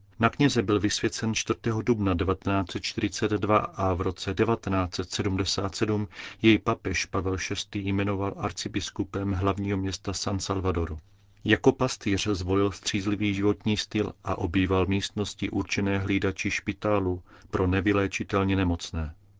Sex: male